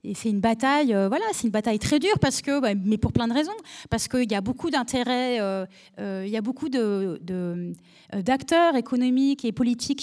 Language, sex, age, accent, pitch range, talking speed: French, female, 30-49, French, 205-265 Hz, 215 wpm